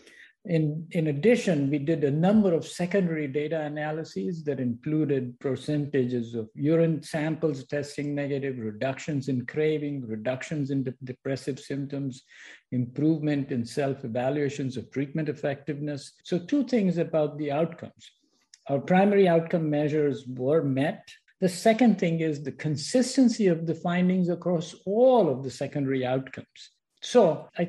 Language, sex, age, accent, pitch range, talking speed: English, male, 50-69, Indian, 135-170 Hz, 130 wpm